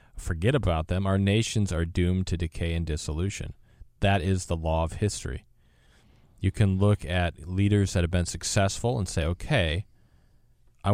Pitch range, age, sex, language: 85-105 Hz, 40-59, male, English